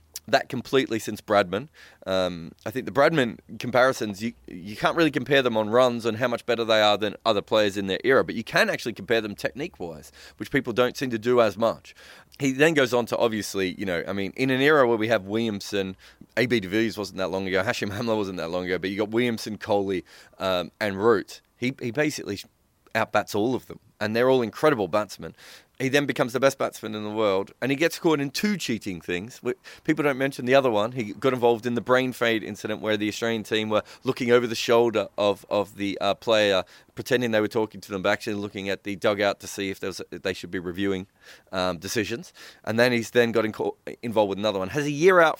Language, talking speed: English, 240 wpm